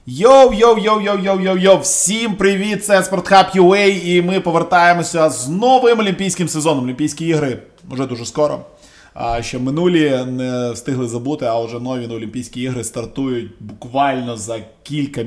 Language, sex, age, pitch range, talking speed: Ukrainian, male, 20-39, 125-170 Hz, 155 wpm